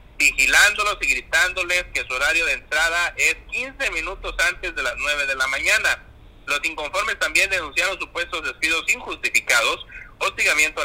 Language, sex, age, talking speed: Spanish, male, 50-69, 145 wpm